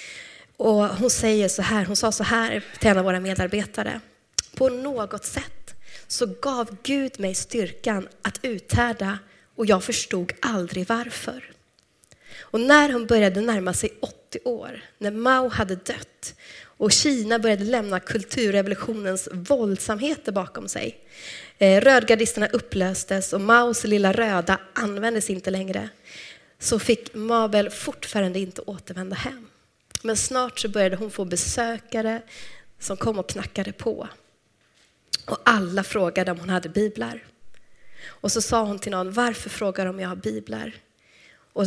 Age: 20-39